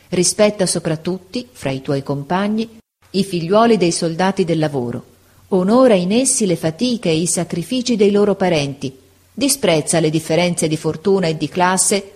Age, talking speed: 40-59, 155 wpm